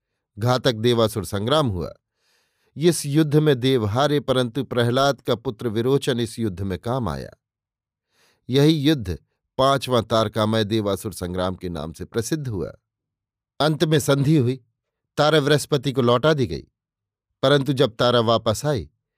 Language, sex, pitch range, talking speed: Hindi, male, 115-140 Hz, 140 wpm